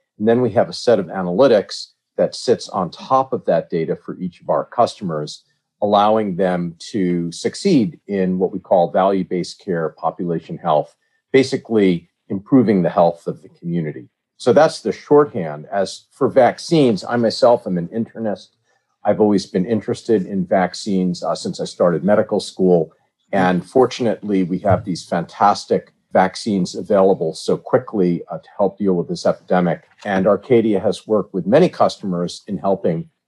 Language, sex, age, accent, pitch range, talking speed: English, male, 50-69, American, 85-105 Hz, 160 wpm